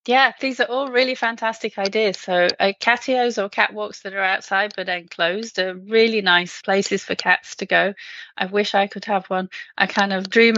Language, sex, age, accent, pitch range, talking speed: English, female, 30-49, British, 185-225 Hz, 205 wpm